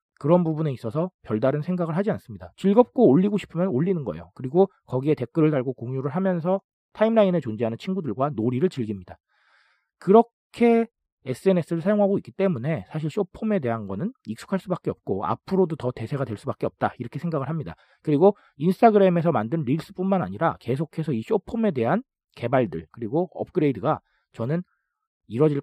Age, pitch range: 40-59, 120-190 Hz